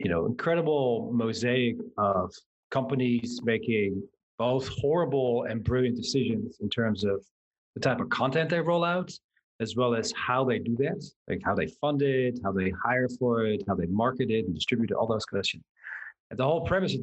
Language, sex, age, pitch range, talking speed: English, male, 40-59, 115-140 Hz, 190 wpm